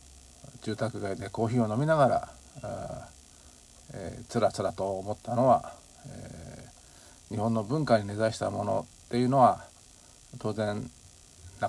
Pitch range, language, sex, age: 90-120 Hz, Japanese, male, 50-69